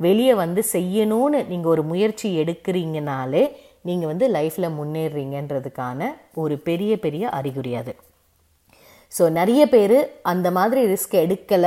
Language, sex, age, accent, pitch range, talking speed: Tamil, female, 20-39, native, 150-195 Hz, 120 wpm